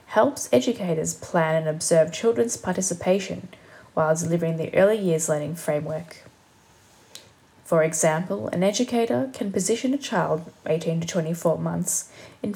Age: 20-39